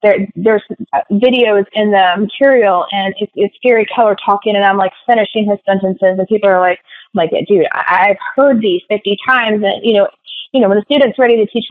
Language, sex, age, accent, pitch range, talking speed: English, female, 20-39, American, 195-245 Hz, 200 wpm